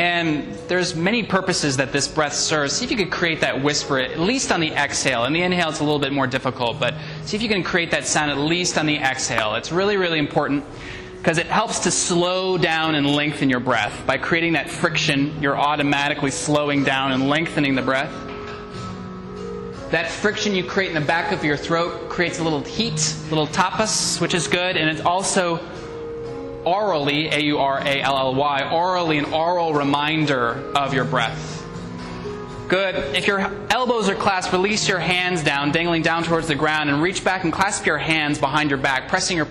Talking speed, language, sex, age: 195 wpm, English, male, 20-39